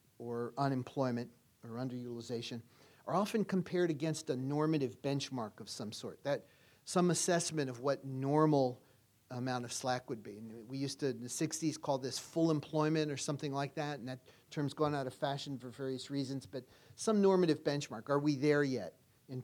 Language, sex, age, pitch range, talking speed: English, male, 50-69, 125-150 Hz, 180 wpm